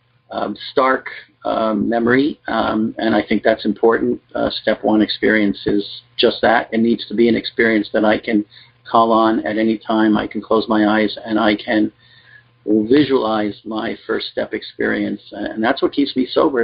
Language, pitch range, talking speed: English, 105-120 Hz, 180 wpm